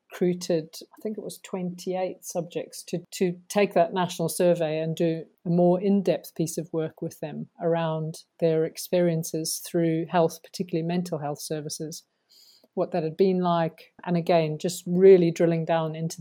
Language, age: English, 50-69